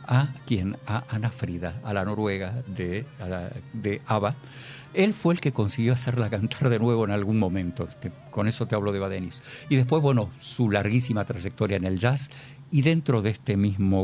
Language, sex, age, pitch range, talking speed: Spanish, male, 60-79, 105-140 Hz, 190 wpm